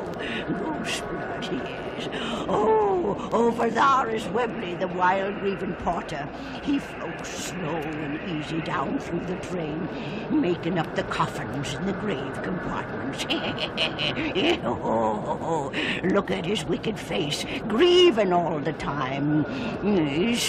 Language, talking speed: English, 115 wpm